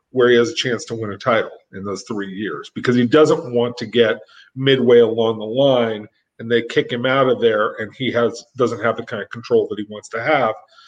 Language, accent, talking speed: English, American, 245 wpm